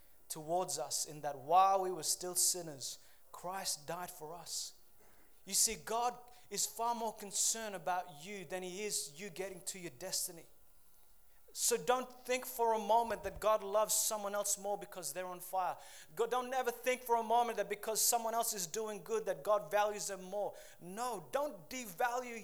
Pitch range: 180-240 Hz